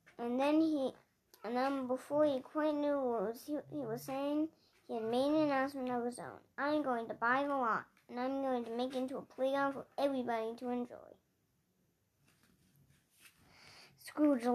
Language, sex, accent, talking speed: English, male, American, 175 wpm